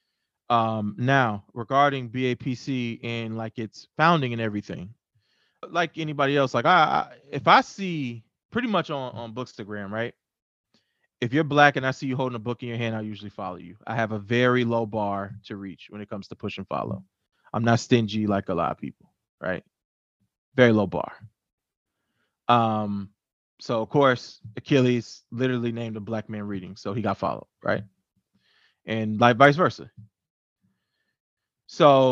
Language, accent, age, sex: English, American, 20-39, male